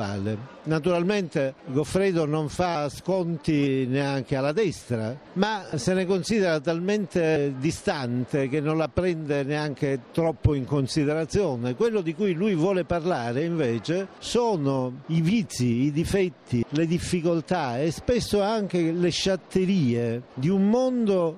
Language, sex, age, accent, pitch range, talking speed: Italian, male, 50-69, native, 140-190 Hz, 125 wpm